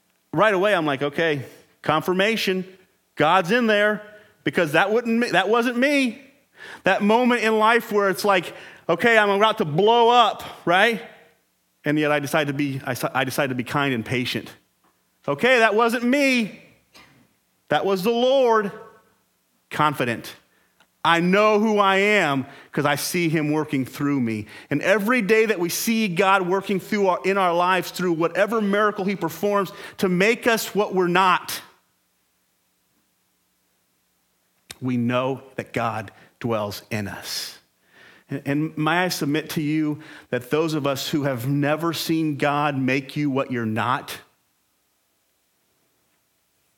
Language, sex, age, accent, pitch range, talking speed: English, male, 30-49, American, 130-205 Hz, 150 wpm